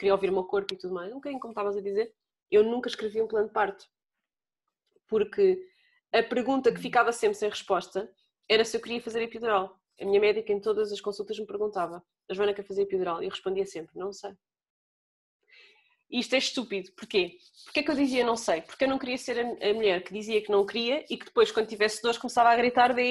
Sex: female